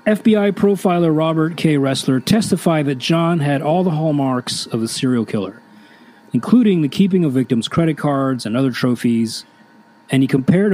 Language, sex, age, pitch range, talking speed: English, male, 30-49, 120-175 Hz, 160 wpm